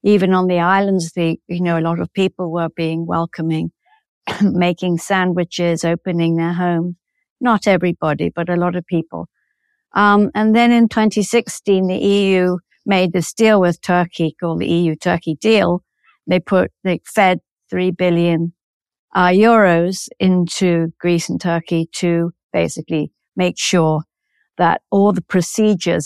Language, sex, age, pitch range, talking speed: English, female, 60-79, 165-185 Hz, 145 wpm